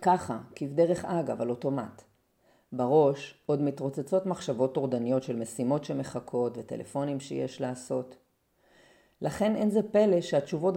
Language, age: Hebrew, 30-49